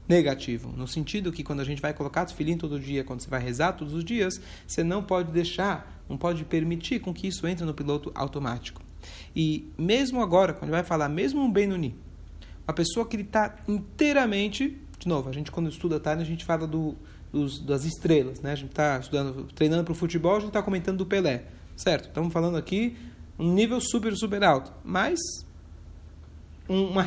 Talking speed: 195 wpm